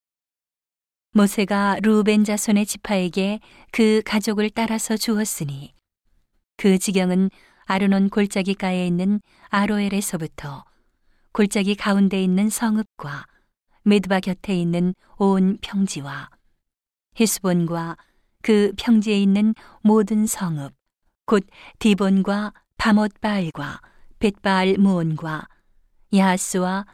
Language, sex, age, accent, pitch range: Korean, female, 40-59, native, 185-215 Hz